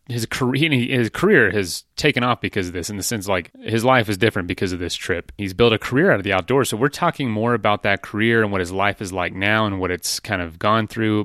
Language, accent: English, American